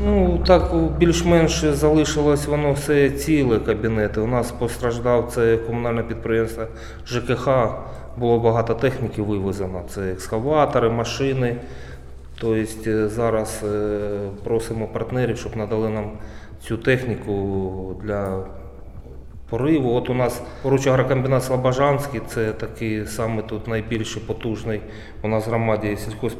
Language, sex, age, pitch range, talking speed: Ukrainian, male, 20-39, 100-120 Hz, 110 wpm